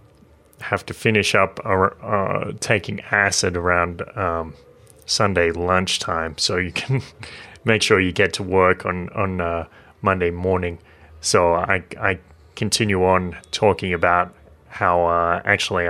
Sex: male